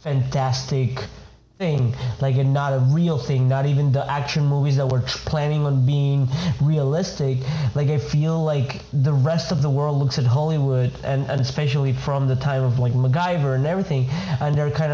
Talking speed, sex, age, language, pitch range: 180 wpm, male, 20-39, English, 130-150 Hz